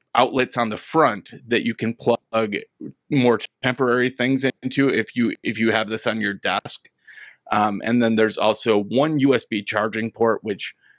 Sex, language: male, English